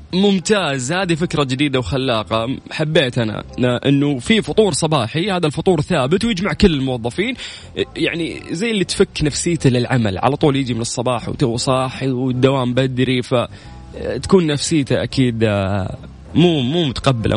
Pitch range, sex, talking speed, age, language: 120-160 Hz, male, 130 wpm, 20-39, Arabic